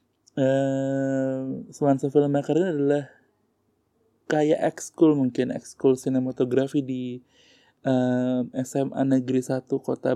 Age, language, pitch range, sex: 20-39, Indonesian, 130-145 Hz, male